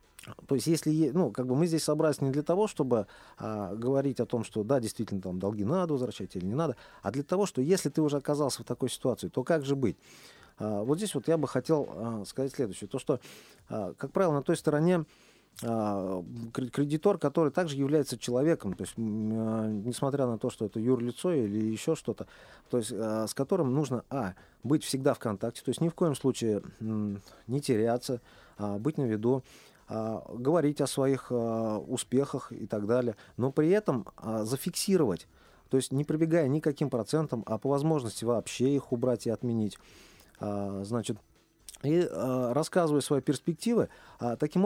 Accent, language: native, Russian